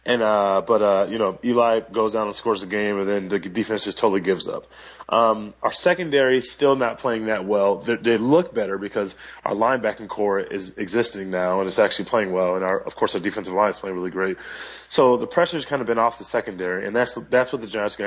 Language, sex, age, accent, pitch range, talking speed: English, male, 20-39, American, 100-125 Hz, 245 wpm